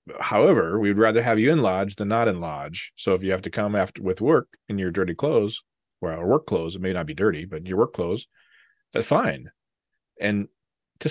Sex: male